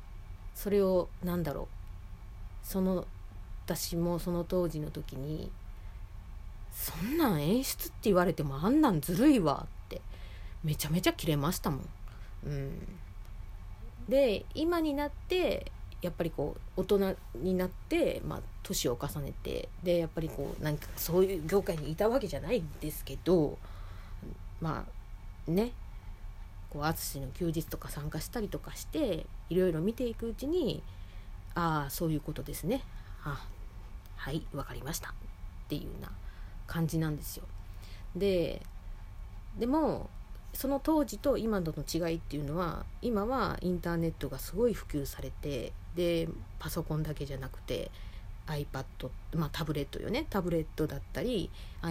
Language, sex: Japanese, female